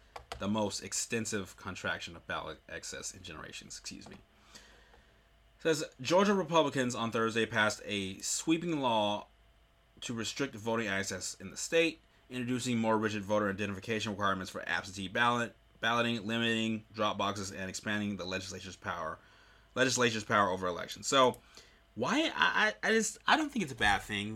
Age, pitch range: 30-49, 95-120 Hz